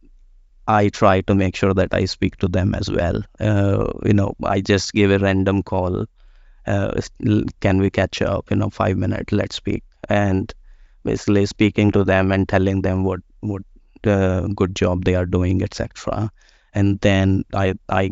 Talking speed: 175 wpm